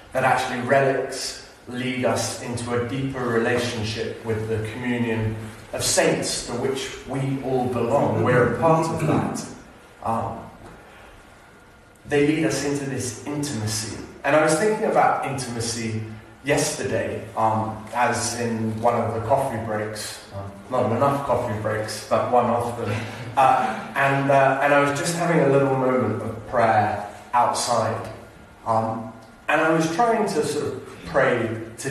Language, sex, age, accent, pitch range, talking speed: English, male, 30-49, British, 115-140 Hz, 145 wpm